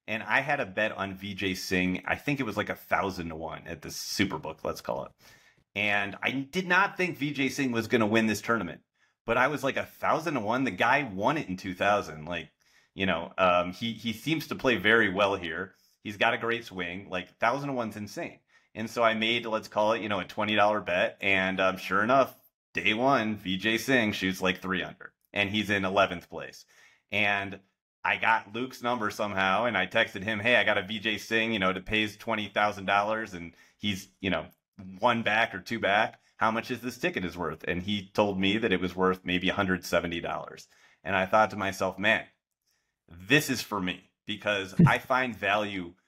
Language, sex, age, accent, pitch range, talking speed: English, male, 30-49, American, 95-115 Hz, 215 wpm